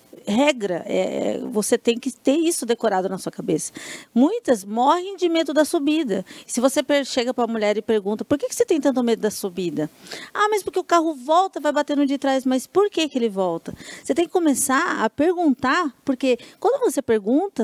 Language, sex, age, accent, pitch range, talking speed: Portuguese, female, 40-59, Brazilian, 215-295 Hz, 200 wpm